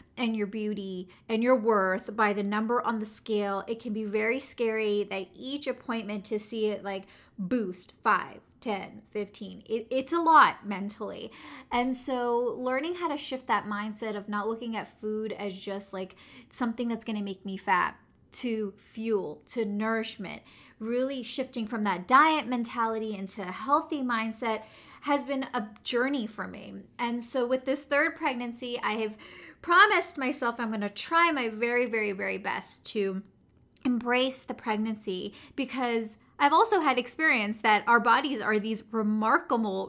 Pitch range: 210-260 Hz